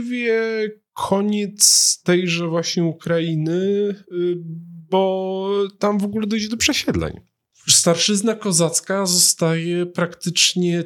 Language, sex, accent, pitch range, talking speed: Polish, male, native, 115-175 Hz, 85 wpm